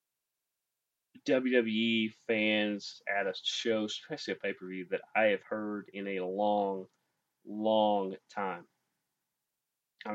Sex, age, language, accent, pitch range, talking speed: male, 30-49, English, American, 105-125 Hz, 105 wpm